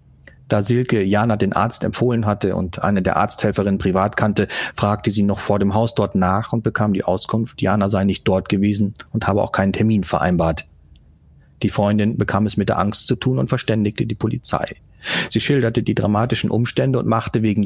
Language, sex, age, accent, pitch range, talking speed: German, male, 40-59, German, 95-115 Hz, 195 wpm